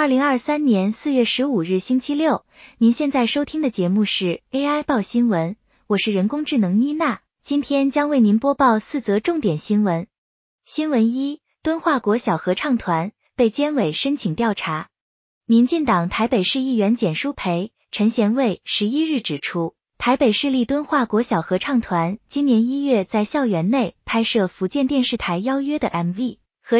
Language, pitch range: Chinese, 200-280 Hz